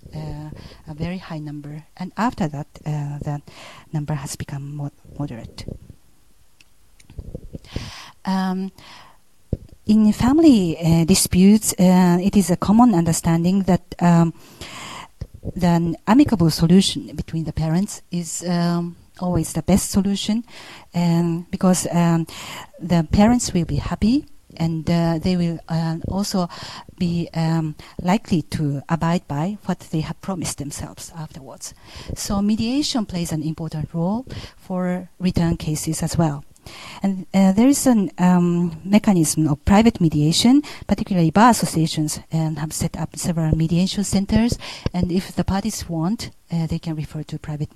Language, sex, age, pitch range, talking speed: English, female, 40-59, 155-190 Hz, 135 wpm